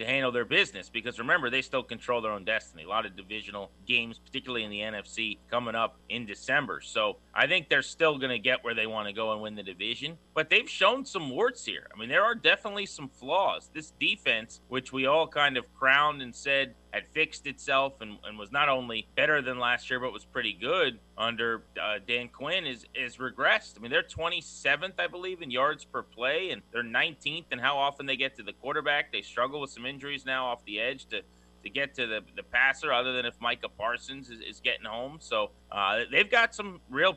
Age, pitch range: 30-49, 120-145 Hz